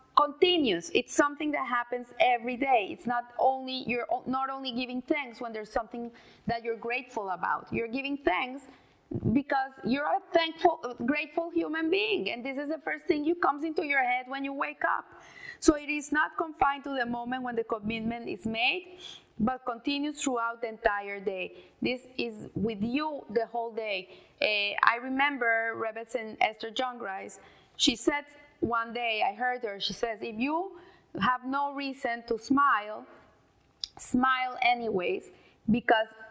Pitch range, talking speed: 235-300 Hz, 165 wpm